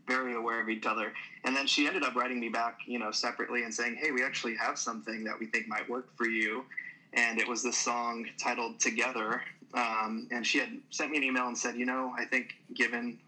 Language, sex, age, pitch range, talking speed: English, male, 20-39, 110-125 Hz, 235 wpm